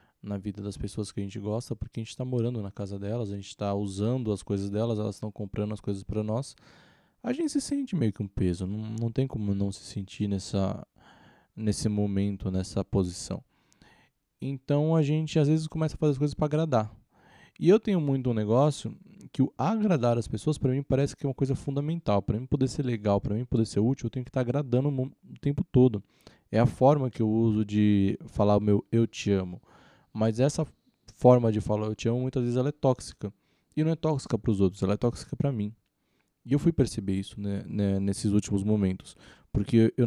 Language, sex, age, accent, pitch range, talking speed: Portuguese, male, 20-39, Brazilian, 100-140 Hz, 225 wpm